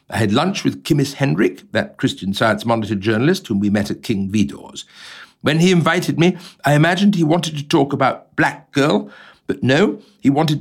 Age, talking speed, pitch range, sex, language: 60-79, 190 wpm, 105-155 Hz, male, English